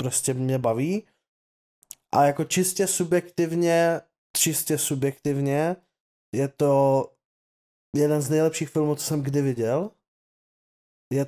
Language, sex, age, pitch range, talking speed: Czech, male, 20-39, 140-155 Hz, 105 wpm